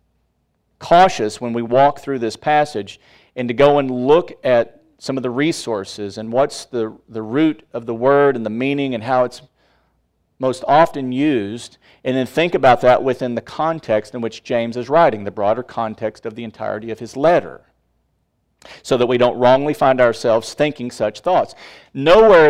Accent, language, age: American, English, 40-59